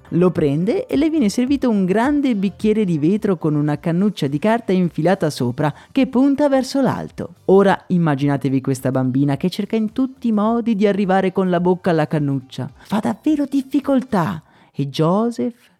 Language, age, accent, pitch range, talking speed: Italian, 30-49, native, 155-220 Hz, 165 wpm